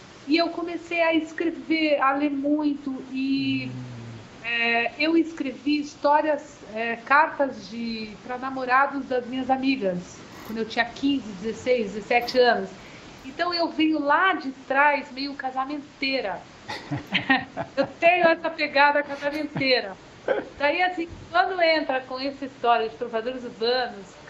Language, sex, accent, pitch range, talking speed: English, female, Brazilian, 245-300 Hz, 125 wpm